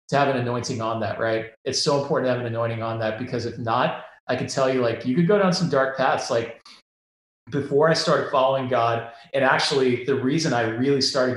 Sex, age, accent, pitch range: male, 30-49, American, 115-135 Hz